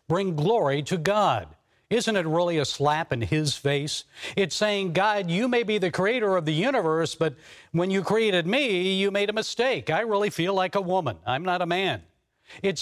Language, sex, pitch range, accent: English, male, 150-200 Hz, American